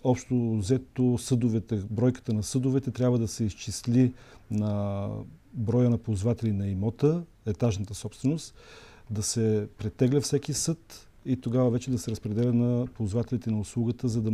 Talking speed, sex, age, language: 145 wpm, male, 40-59, Bulgarian